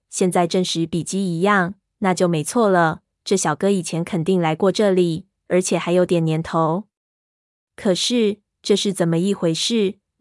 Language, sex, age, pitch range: Chinese, female, 20-39, 175-210 Hz